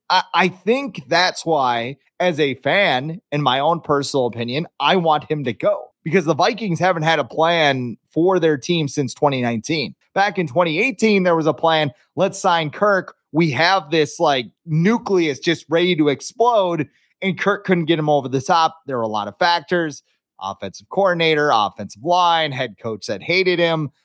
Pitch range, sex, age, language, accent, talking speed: 150-190 Hz, male, 30-49, English, American, 175 wpm